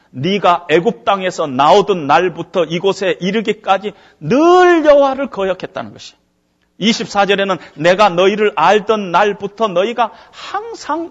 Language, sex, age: Korean, male, 40-59